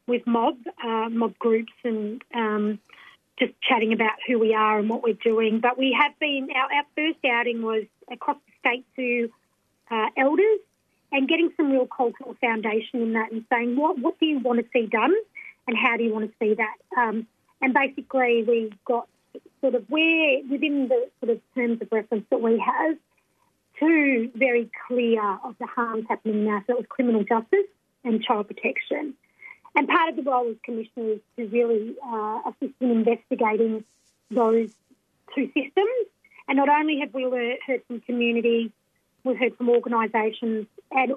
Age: 40-59